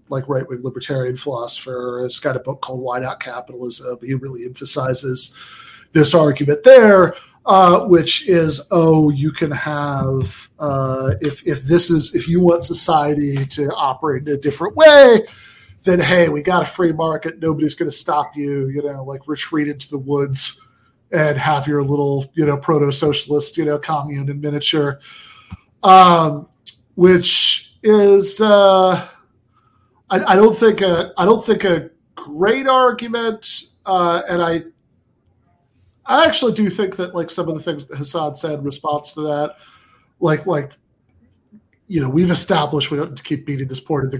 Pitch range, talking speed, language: 135-170 Hz, 165 wpm, English